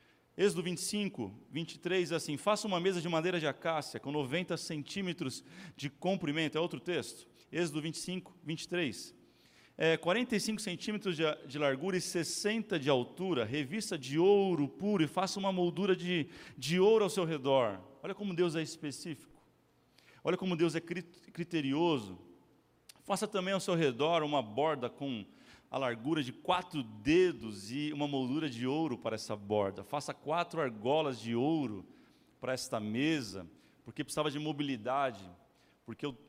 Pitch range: 130-175 Hz